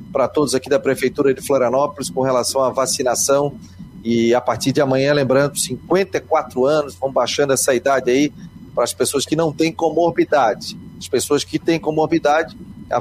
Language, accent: Portuguese, Brazilian